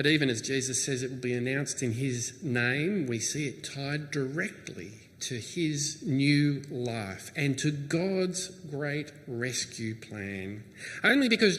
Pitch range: 135-170 Hz